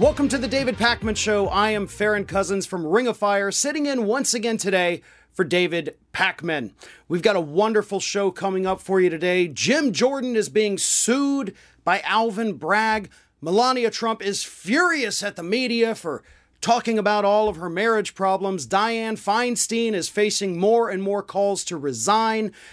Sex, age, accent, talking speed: male, 40-59, American, 170 wpm